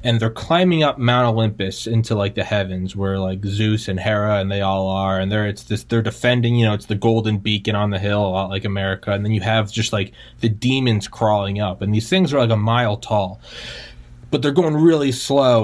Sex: male